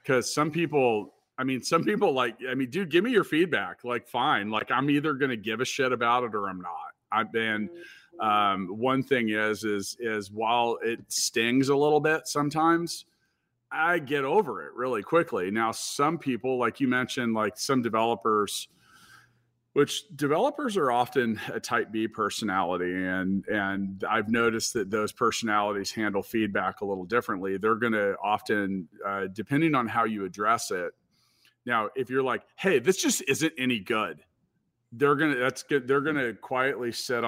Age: 40-59